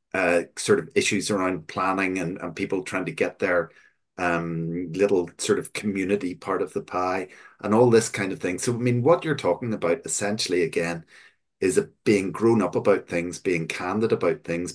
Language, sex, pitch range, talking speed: English, male, 85-100 Hz, 195 wpm